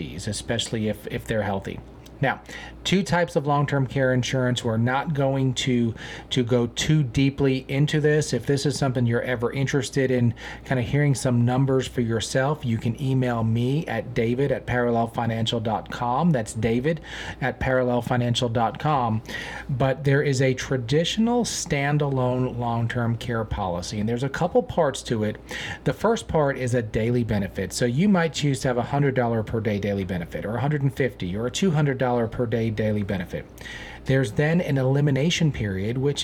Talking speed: 175 wpm